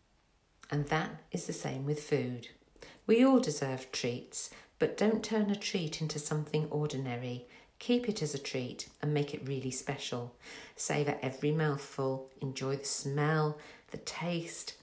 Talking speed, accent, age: 150 wpm, British, 50-69